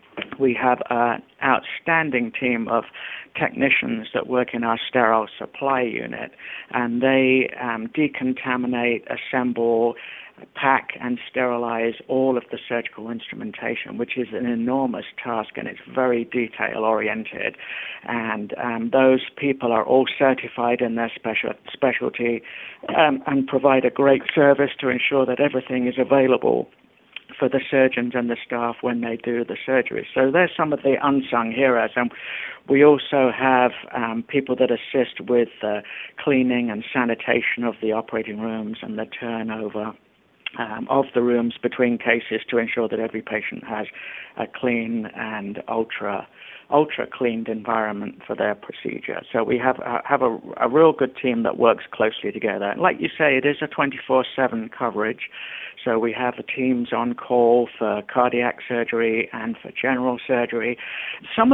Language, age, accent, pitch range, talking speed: English, 60-79, British, 115-130 Hz, 155 wpm